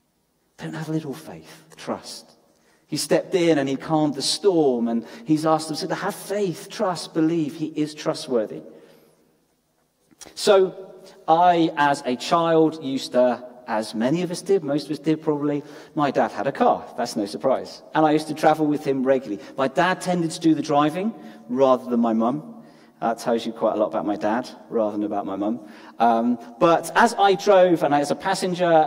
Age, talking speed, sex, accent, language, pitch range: 40-59, 190 wpm, male, British, English, 105-160 Hz